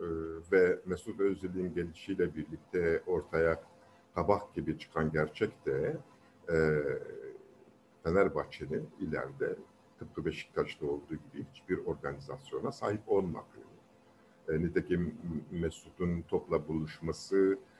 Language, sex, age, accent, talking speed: Turkish, male, 50-69, native, 95 wpm